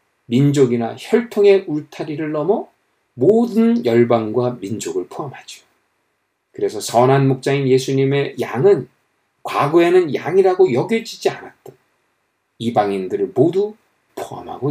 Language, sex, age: Korean, male, 40-59